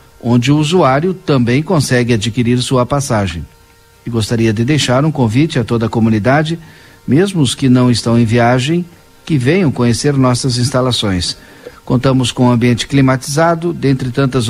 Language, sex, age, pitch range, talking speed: Portuguese, male, 50-69, 115-150 Hz, 155 wpm